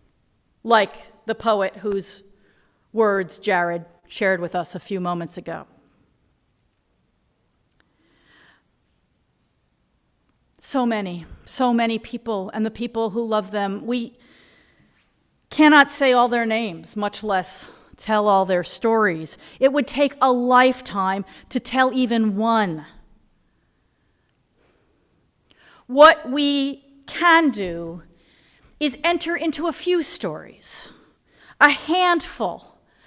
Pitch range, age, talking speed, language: 205-280 Hz, 40-59, 105 wpm, English